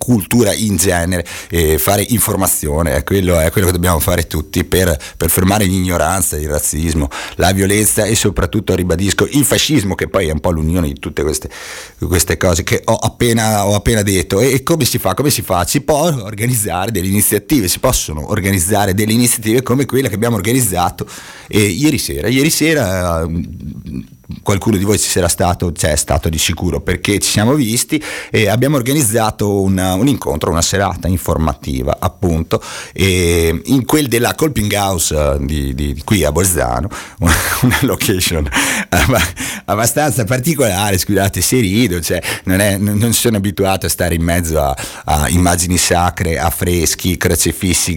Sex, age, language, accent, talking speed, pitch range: male, 30-49, Italian, native, 170 wpm, 85-115 Hz